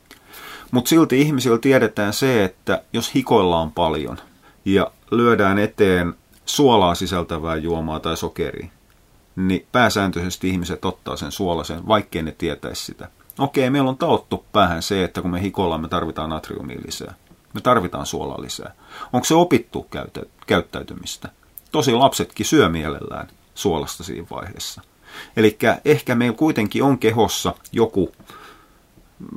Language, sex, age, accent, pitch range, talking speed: Finnish, male, 30-49, native, 85-115 Hz, 130 wpm